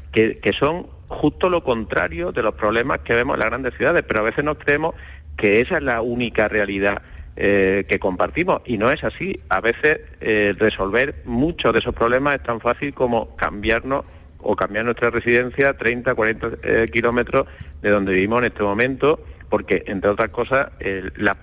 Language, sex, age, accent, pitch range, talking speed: Spanish, male, 40-59, Spanish, 95-115 Hz, 190 wpm